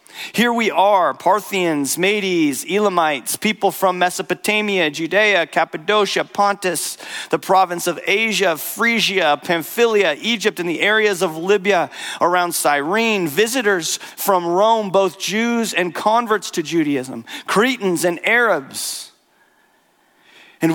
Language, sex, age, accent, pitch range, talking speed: English, male, 40-59, American, 150-220 Hz, 115 wpm